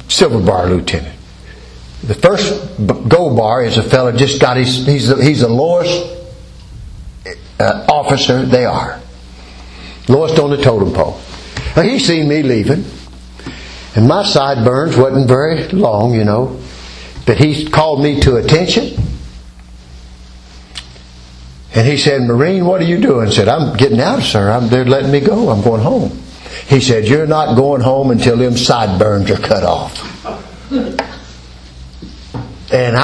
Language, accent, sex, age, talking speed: English, American, male, 60-79, 140 wpm